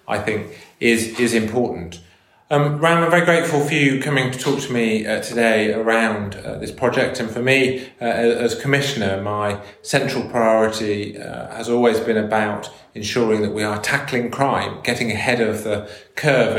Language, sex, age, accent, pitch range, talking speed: English, male, 30-49, British, 110-130 Hz, 175 wpm